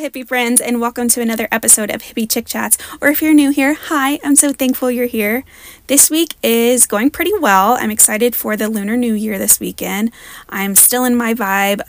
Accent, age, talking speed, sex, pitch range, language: American, 20-39, 215 wpm, female, 195-250 Hz, English